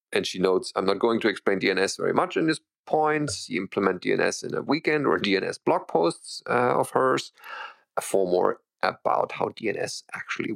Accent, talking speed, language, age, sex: German, 190 wpm, English, 40-59, male